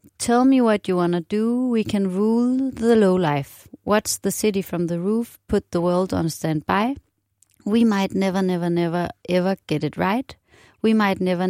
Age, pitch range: 30-49, 150-195 Hz